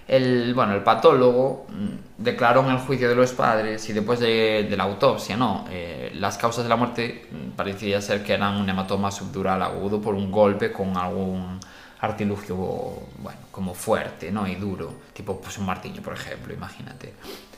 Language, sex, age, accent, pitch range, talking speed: Spanish, male, 20-39, Spanish, 100-125 Hz, 160 wpm